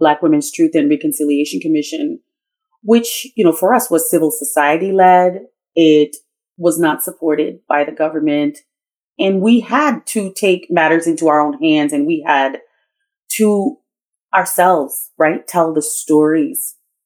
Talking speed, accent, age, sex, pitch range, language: 145 wpm, American, 30-49, female, 160-220 Hz, English